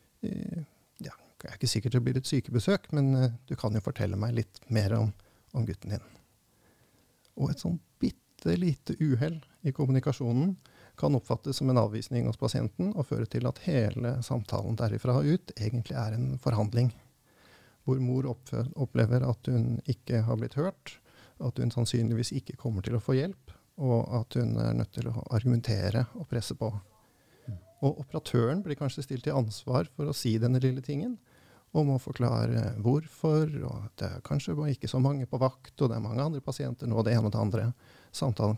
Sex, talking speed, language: male, 180 wpm, English